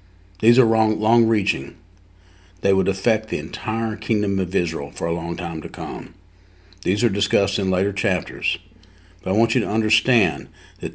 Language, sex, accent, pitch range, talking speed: English, male, American, 90-100 Hz, 165 wpm